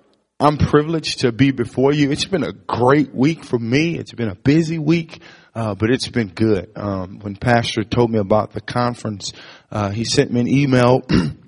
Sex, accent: male, American